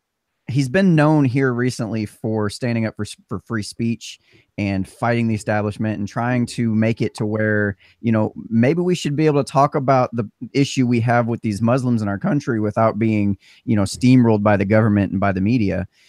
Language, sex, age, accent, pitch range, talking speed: English, male, 30-49, American, 100-125 Hz, 205 wpm